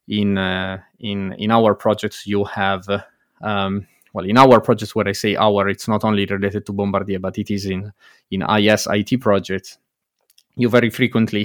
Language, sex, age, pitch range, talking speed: English, male, 20-39, 100-115 Hz, 180 wpm